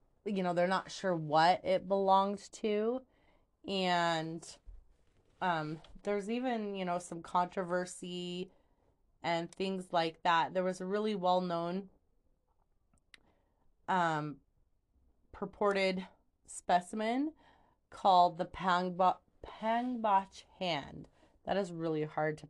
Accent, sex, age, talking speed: American, female, 30-49, 105 wpm